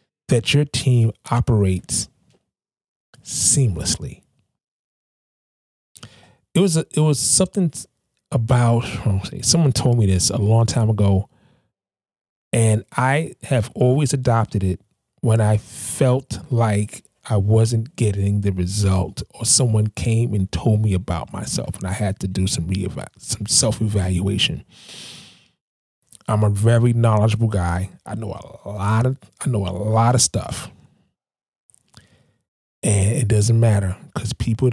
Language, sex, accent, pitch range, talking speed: English, male, American, 100-125 Hz, 130 wpm